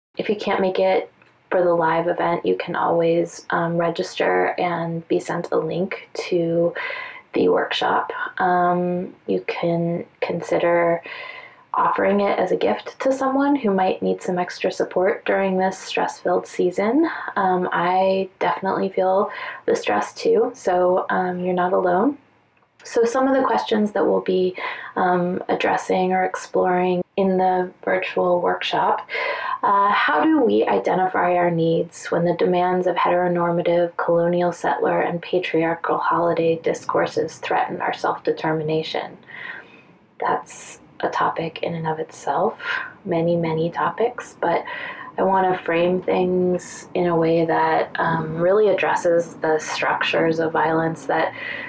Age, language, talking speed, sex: 20-39, English, 140 wpm, female